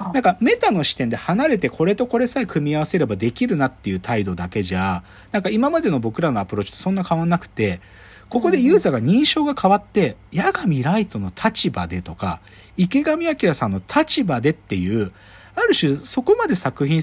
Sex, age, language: male, 40-59, Japanese